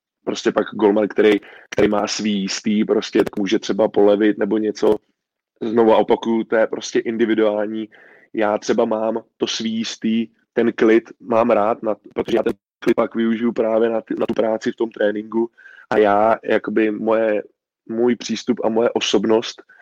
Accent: native